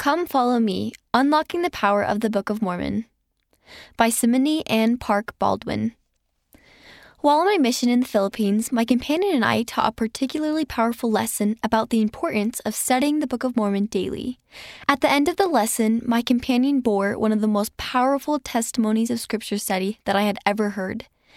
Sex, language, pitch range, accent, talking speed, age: female, English, 210-255 Hz, American, 185 wpm, 10-29